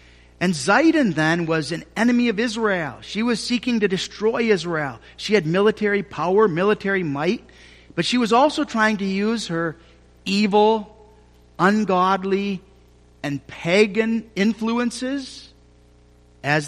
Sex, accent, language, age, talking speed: male, American, English, 50-69, 120 wpm